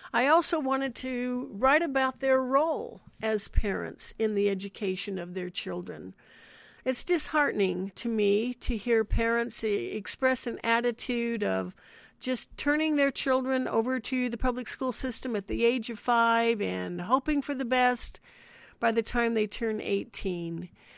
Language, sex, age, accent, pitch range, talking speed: English, female, 60-79, American, 205-260 Hz, 150 wpm